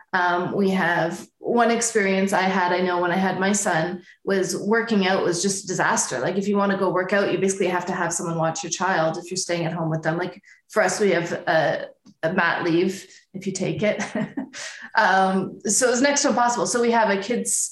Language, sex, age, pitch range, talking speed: English, female, 20-39, 175-205 Hz, 235 wpm